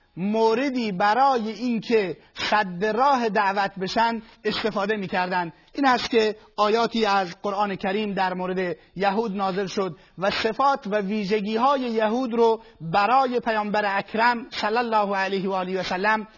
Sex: male